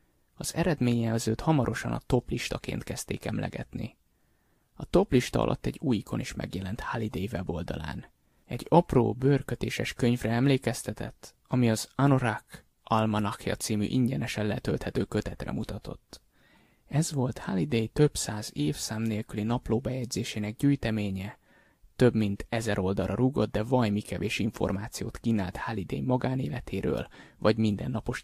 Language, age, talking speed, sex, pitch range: Hungarian, 20-39, 115 wpm, male, 105-125 Hz